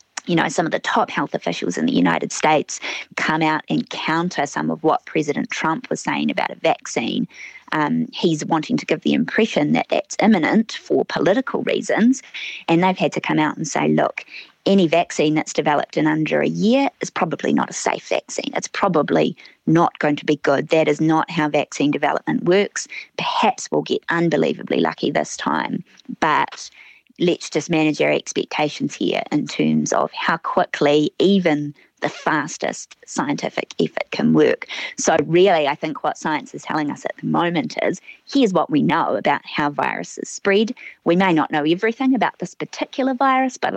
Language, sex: English, female